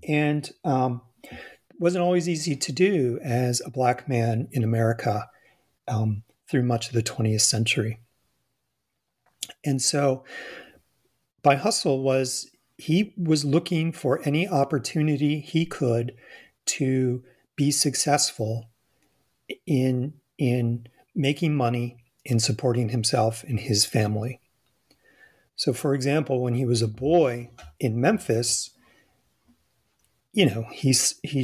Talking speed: 115 wpm